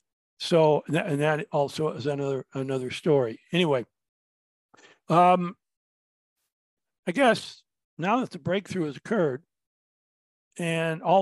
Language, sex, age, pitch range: English, male, 60-79, 140-180 Hz